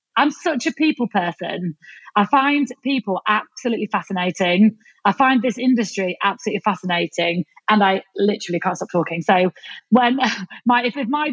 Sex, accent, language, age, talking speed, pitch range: female, British, English, 30-49, 150 wpm, 190-235 Hz